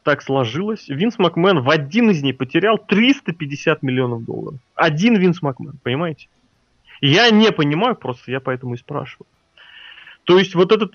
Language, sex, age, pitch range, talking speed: Russian, male, 30-49, 130-170 Hz, 155 wpm